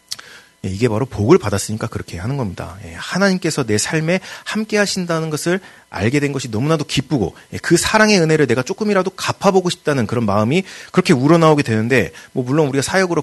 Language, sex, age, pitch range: Korean, male, 30-49, 110-180 Hz